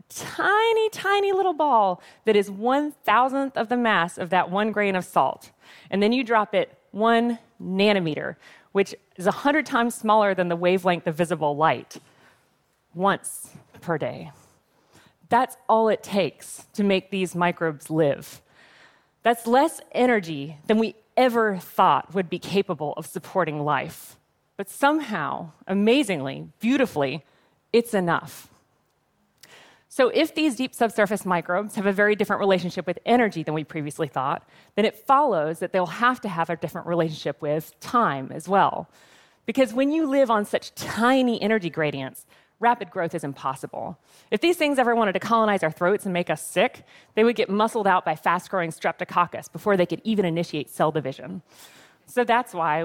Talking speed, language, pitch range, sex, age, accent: 160 wpm, English, 170-235 Hz, female, 30-49, American